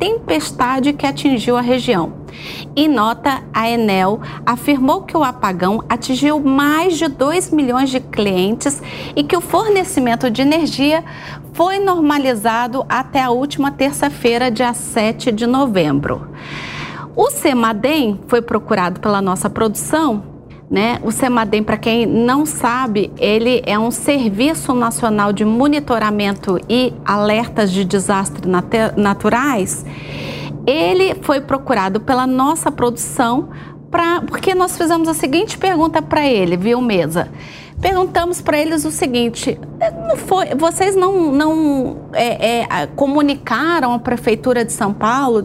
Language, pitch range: Portuguese, 225-290 Hz